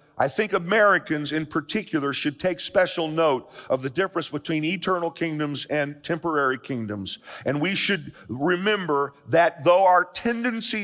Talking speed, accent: 145 wpm, American